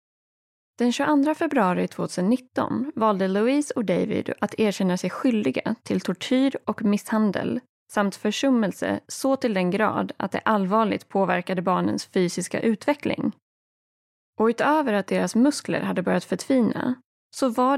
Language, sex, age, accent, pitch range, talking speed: Swedish, female, 30-49, native, 185-255 Hz, 130 wpm